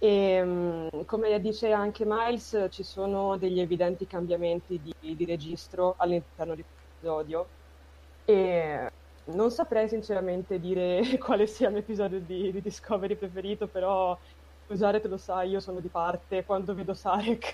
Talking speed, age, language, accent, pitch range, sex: 135 wpm, 20-39, Italian, native, 170-205 Hz, female